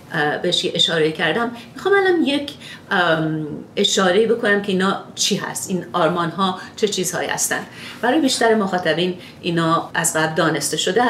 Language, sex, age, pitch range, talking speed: Persian, female, 40-59, 160-200 Hz, 150 wpm